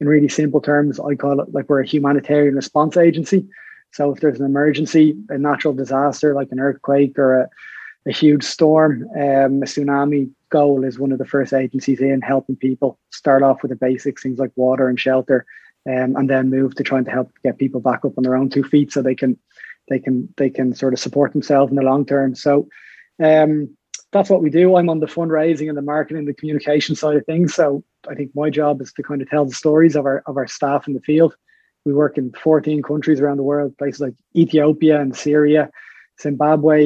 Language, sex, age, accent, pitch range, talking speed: English, male, 20-39, Irish, 135-150 Hz, 225 wpm